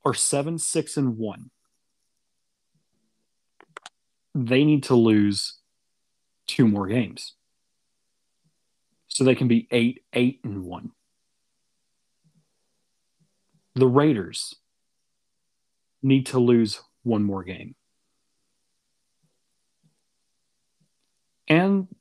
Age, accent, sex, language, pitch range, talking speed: 40-59, American, male, English, 115-140 Hz, 80 wpm